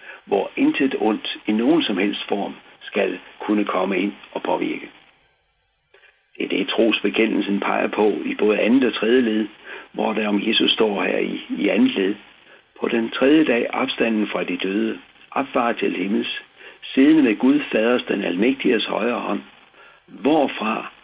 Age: 60-79